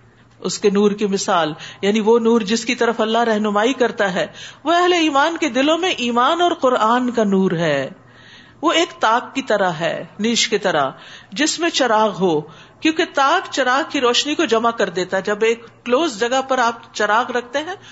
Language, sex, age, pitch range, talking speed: Urdu, female, 50-69, 210-280 Hz, 200 wpm